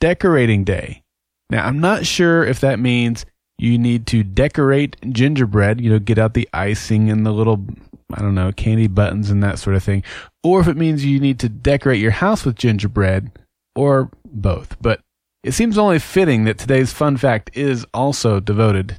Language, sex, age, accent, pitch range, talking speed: English, male, 30-49, American, 100-140 Hz, 185 wpm